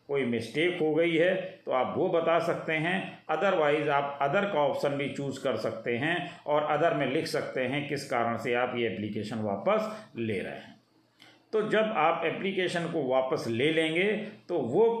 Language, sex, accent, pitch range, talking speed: Hindi, male, native, 130-180 Hz, 190 wpm